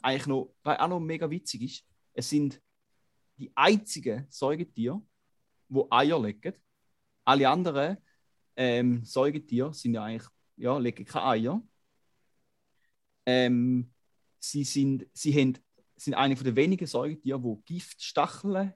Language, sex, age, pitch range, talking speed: German, male, 30-49, 120-145 Hz, 120 wpm